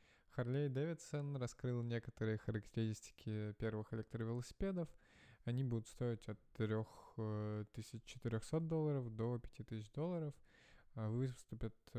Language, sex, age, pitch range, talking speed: Russian, male, 20-39, 110-130 Hz, 85 wpm